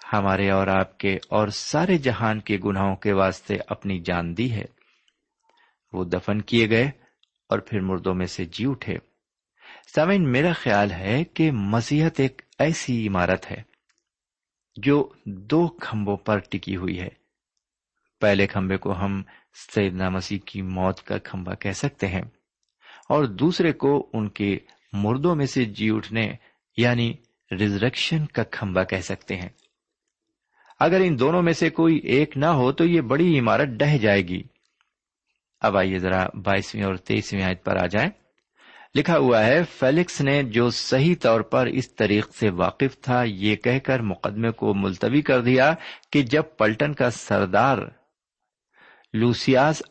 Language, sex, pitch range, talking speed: Urdu, male, 100-140 Hz, 155 wpm